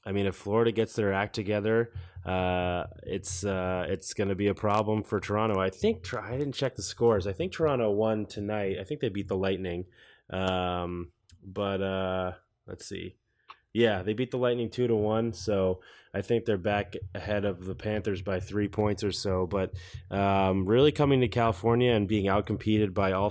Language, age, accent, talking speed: English, 20-39, American, 195 wpm